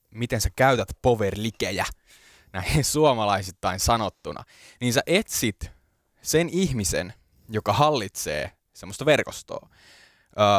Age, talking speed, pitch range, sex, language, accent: 20-39, 95 wpm, 95-130 Hz, male, Finnish, native